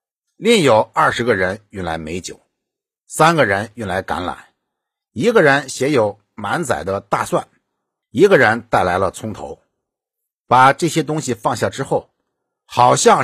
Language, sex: Chinese, male